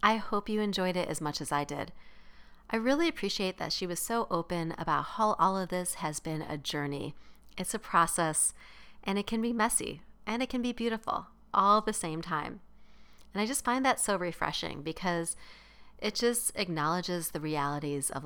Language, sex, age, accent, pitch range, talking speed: English, female, 40-59, American, 160-210 Hz, 195 wpm